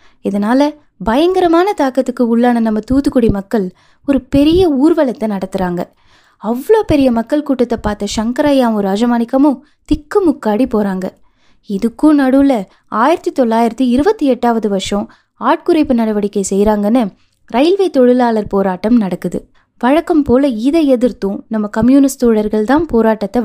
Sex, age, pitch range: female, 20-39, 215-290 Hz